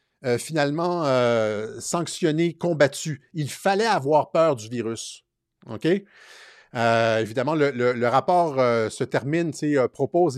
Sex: male